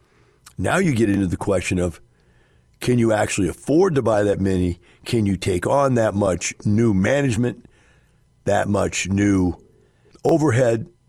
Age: 50-69